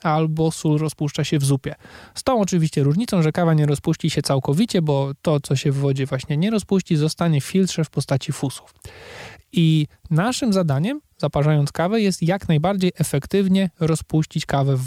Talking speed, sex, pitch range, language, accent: 170 wpm, male, 145-170 Hz, Polish, native